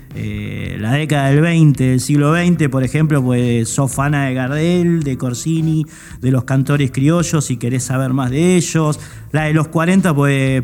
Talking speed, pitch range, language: 175 wpm, 135-170 Hz, Spanish